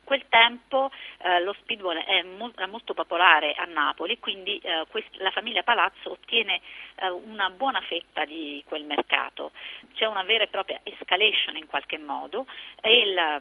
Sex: female